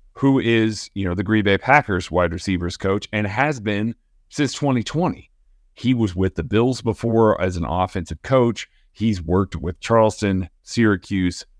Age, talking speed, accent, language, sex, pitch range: 40-59, 160 wpm, American, English, male, 100-135 Hz